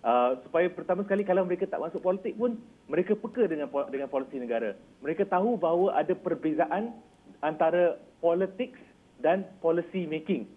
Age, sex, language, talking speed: 40-59, male, Malay, 150 wpm